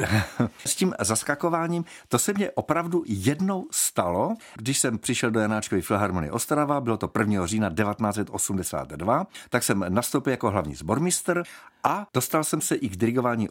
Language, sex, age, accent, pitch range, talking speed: Czech, male, 50-69, native, 105-150 Hz, 150 wpm